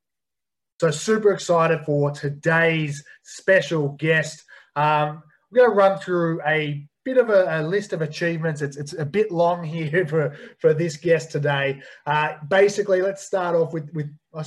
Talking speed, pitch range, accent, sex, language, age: 165 wpm, 145-170 Hz, Australian, male, English, 20-39